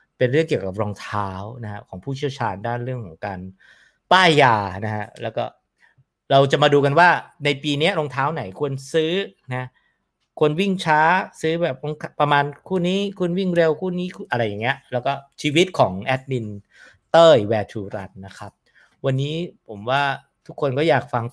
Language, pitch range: English, 105-145 Hz